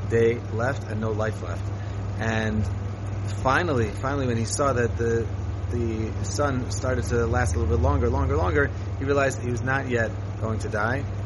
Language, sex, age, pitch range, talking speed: English, male, 30-49, 100-115 Hz, 180 wpm